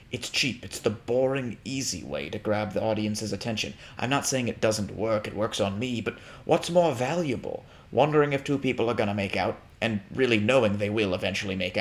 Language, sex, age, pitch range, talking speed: English, male, 30-49, 105-125 Hz, 210 wpm